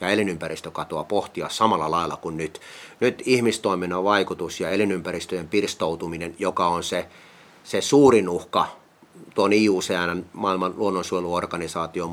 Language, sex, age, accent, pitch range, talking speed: Finnish, male, 30-49, native, 90-110 Hz, 110 wpm